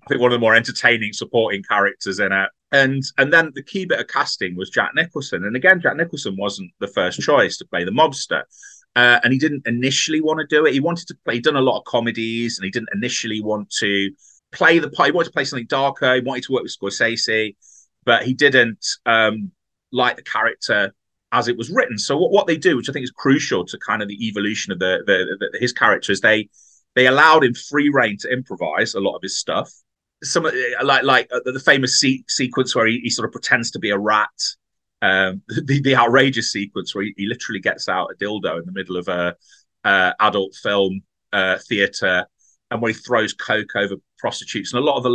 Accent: British